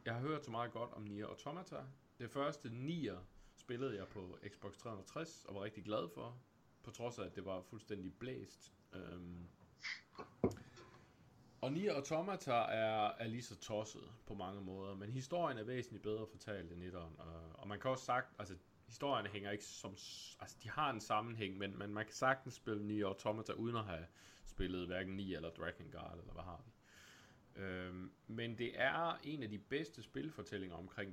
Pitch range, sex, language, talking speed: 90-120 Hz, male, Danish, 185 wpm